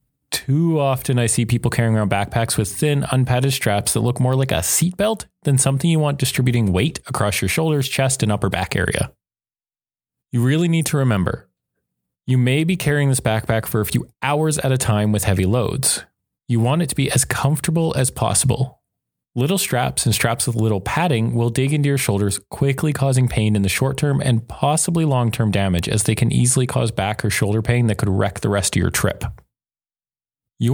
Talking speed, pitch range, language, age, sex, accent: 205 wpm, 105-135 Hz, English, 20-39, male, American